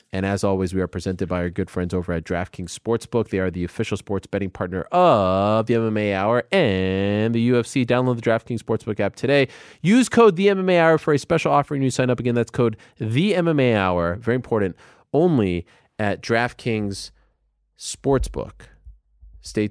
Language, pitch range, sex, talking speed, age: English, 95-130 Hz, male, 185 wpm, 30-49